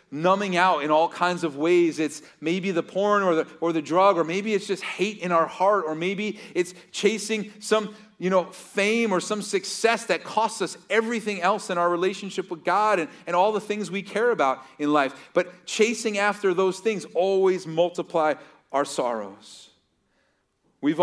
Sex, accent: male, American